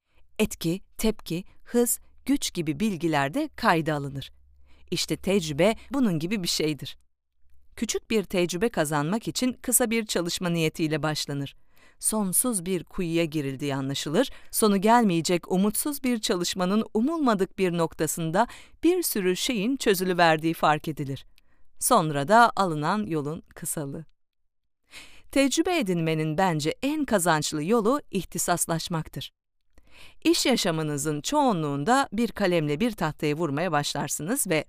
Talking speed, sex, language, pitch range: 110 wpm, female, Turkish, 155-230 Hz